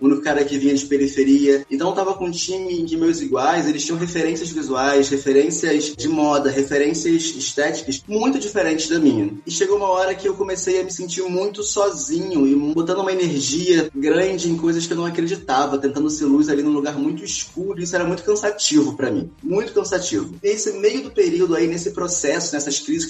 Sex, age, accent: male, 20-39, Brazilian